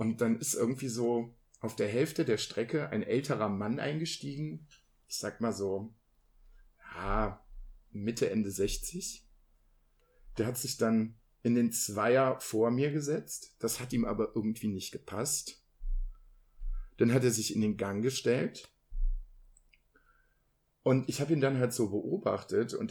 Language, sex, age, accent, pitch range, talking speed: German, male, 50-69, German, 110-145 Hz, 145 wpm